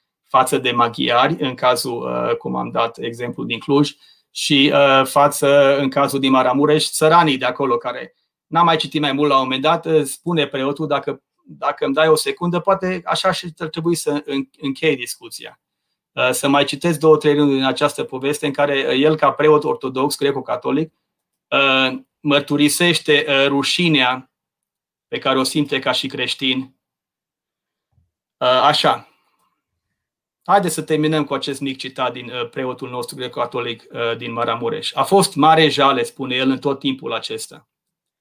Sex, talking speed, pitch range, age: male, 160 wpm, 135-155 Hz, 30-49